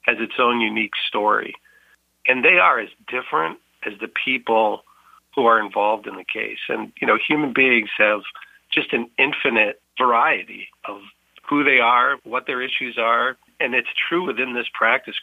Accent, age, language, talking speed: American, 40-59, English, 170 wpm